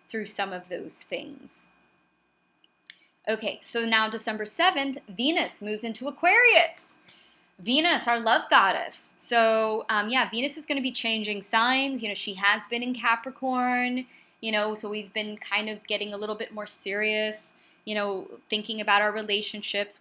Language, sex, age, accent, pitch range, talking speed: English, female, 20-39, American, 205-265 Hz, 160 wpm